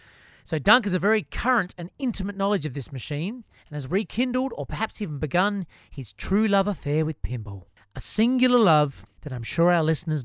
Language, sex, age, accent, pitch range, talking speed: English, male, 30-49, Australian, 155-230 Hz, 195 wpm